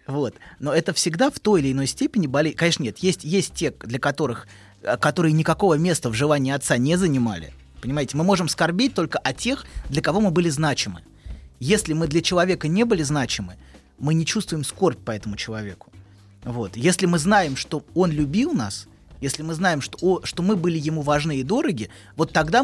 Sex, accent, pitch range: male, native, 120-175 Hz